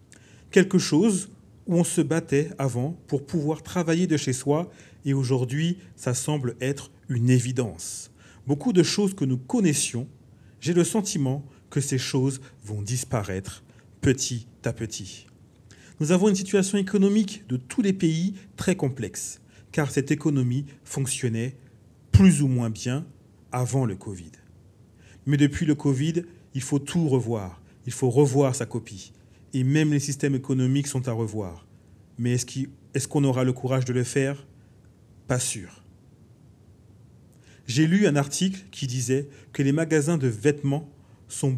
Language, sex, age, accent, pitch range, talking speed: French, male, 40-59, French, 115-145 Hz, 150 wpm